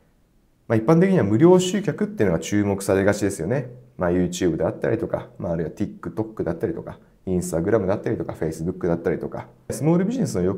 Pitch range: 95-150 Hz